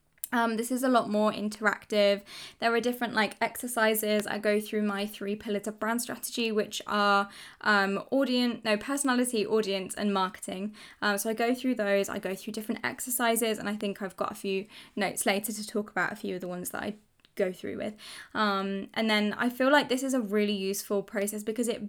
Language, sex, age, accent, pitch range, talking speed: English, female, 10-29, British, 200-225 Hz, 210 wpm